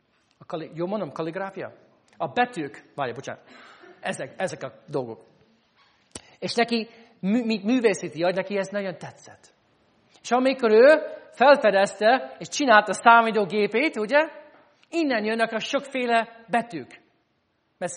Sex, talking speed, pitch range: male, 125 wpm, 135-225 Hz